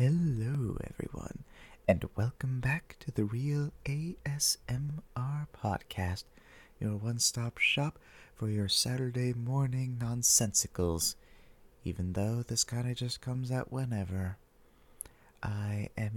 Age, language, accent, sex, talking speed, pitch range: 30-49, English, American, male, 110 wpm, 105-125 Hz